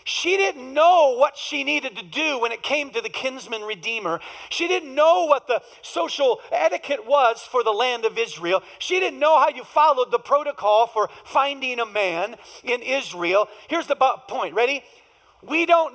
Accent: American